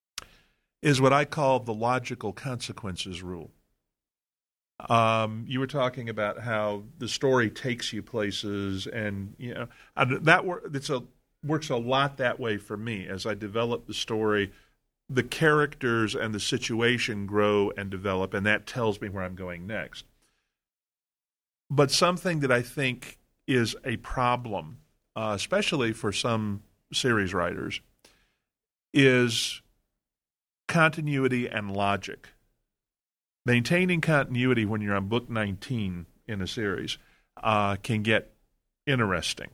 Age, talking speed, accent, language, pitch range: 40-59, 130 wpm, American, English, 105-135 Hz